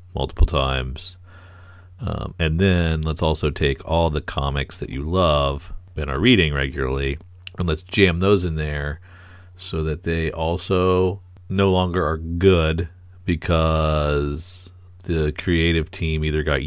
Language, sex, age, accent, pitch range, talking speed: English, male, 40-59, American, 80-95 Hz, 135 wpm